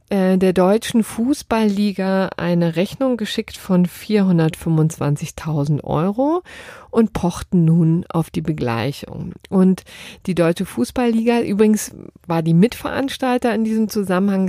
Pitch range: 160-205 Hz